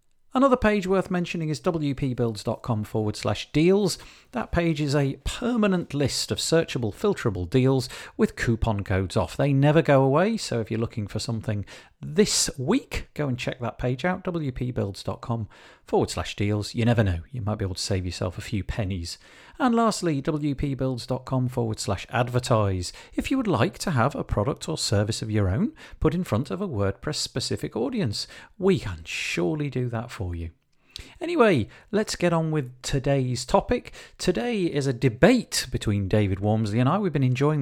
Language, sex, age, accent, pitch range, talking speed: English, male, 40-59, British, 110-165 Hz, 175 wpm